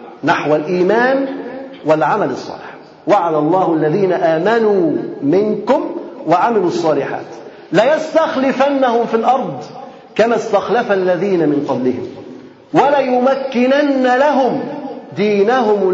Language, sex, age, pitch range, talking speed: Arabic, male, 40-59, 185-270 Hz, 85 wpm